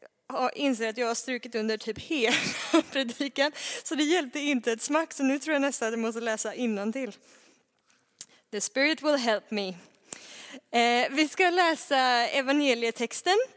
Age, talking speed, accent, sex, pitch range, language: 20-39, 165 wpm, native, female, 215-280 Hz, Swedish